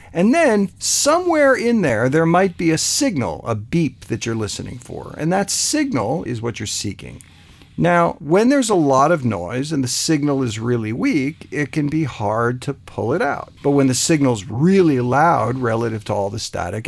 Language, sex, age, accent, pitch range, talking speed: English, male, 50-69, American, 115-170 Hz, 195 wpm